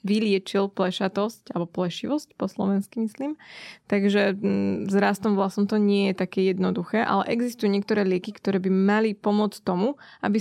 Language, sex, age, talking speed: Slovak, female, 20-39, 150 wpm